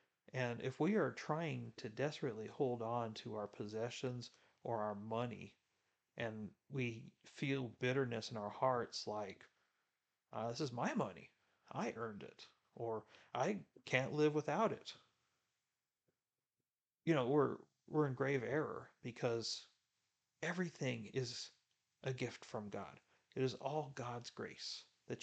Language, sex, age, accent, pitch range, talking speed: English, male, 40-59, American, 120-170 Hz, 135 wpm